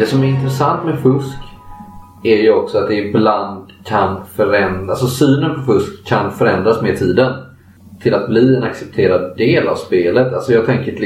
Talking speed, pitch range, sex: 185 wpm, 95-130 Hz, male